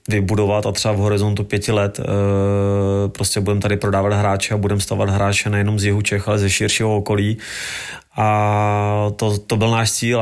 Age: 20-39